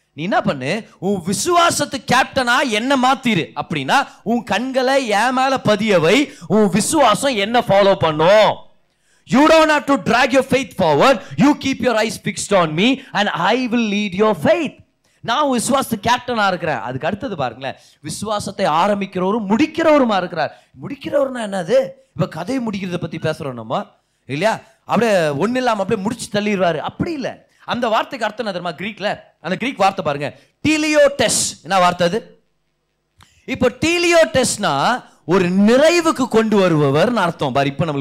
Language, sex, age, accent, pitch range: Tamil, male, 30-49, native, 185-255 Hz